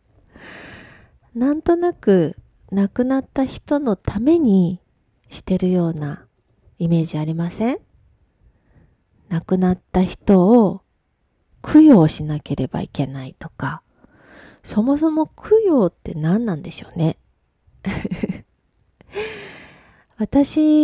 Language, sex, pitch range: Japanese, female, 165-235 Hz